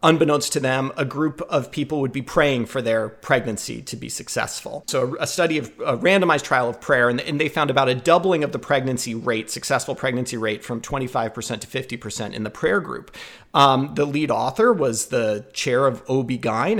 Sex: male